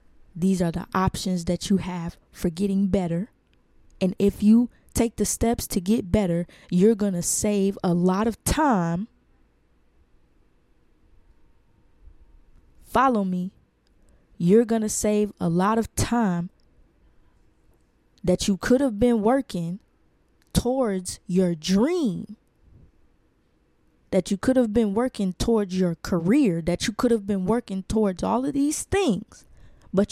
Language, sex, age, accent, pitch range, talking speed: English, female, 20-39, American, 165-210 Hz, 135 wpm